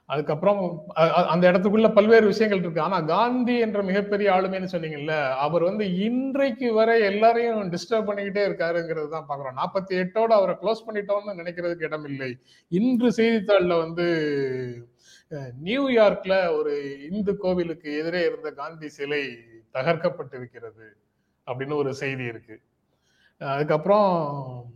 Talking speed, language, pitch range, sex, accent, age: 110 wpm, Tamil, 140-190 Hz, male, native, 30-49